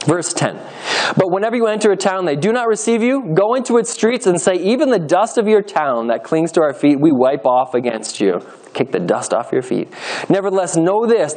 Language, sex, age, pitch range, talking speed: English, male, 20-39, 130-200 Hz, 230 wpm